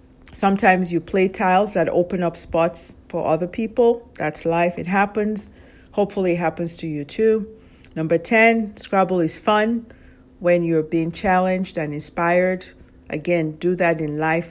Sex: female